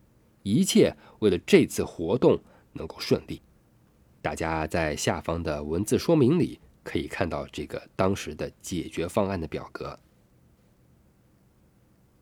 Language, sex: Chinese, male